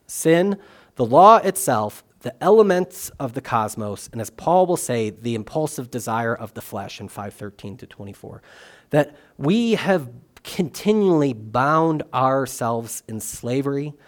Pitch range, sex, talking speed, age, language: 120-165 Hz, male, 135 wpm, 30-49, English